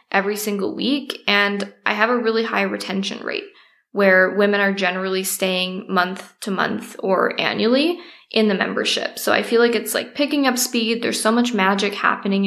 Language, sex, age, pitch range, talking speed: English, female, 10-29, 195-240 Hz, 185 wpm